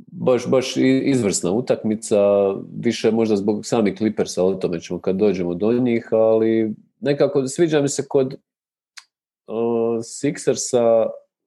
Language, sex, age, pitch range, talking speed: English, male, 40-59, 95-125 Hz, 125 wpm